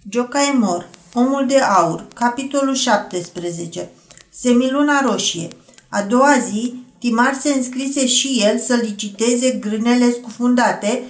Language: Romanian